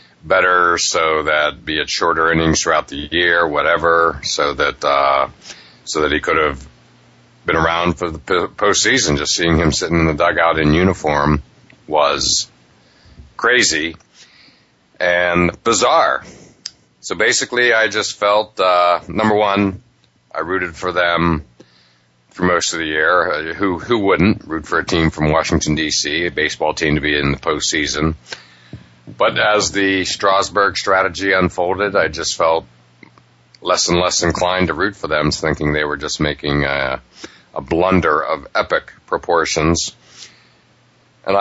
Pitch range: 75-90 Hz